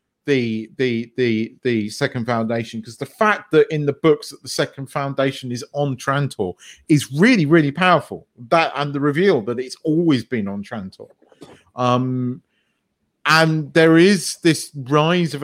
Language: English